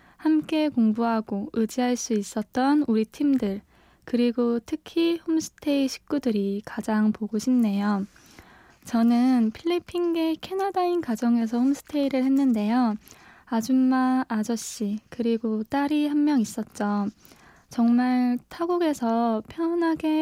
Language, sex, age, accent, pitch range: Korean, female, 20-39, native, 215-260 Hz